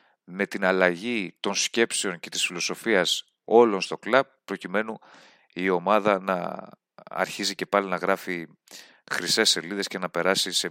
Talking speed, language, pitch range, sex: 145 wpm, Greek, 95-120 Hz, male